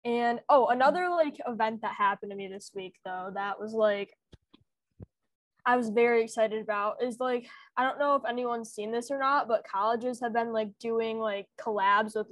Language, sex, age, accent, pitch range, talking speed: English, female, 10-29, American, 210-255 Hz, 195 wpm